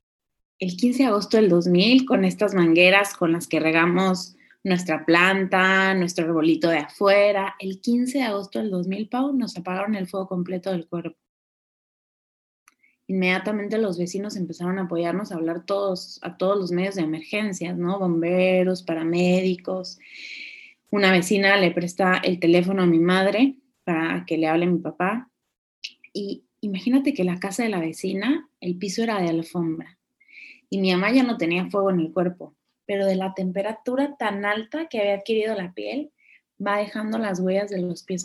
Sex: female